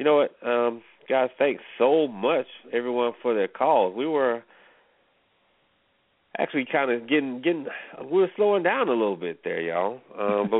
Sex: male